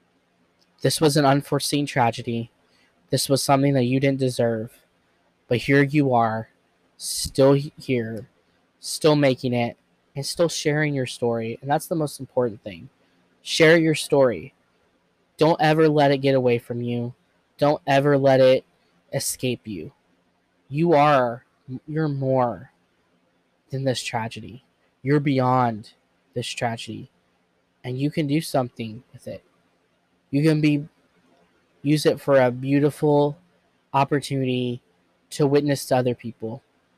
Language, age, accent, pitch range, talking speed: English, 20-39, American, 110-140 Hz, 130 wpm